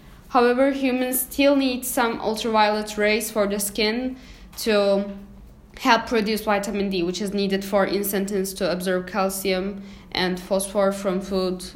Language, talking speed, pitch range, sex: English, 140 wpm, 195-235 Hz, female